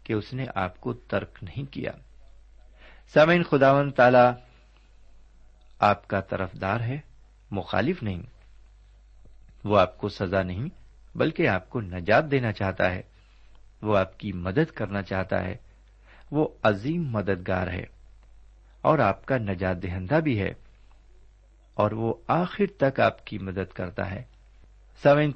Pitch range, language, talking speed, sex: 95-125 Hz, Urdu, 135 wpm, male